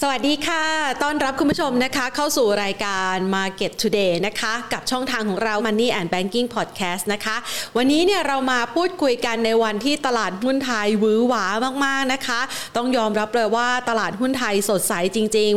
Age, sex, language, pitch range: 30-49, female, Thai, 215-265 Hz